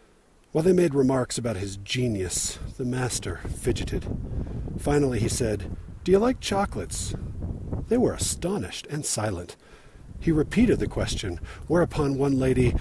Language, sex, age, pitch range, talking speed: English, male, 50-69, 100-140 Hz, 135 wpm